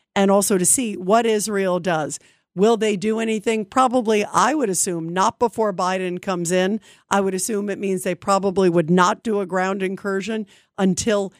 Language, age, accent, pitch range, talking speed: English, 50-69, American, 180-220 Hz, 180 wpm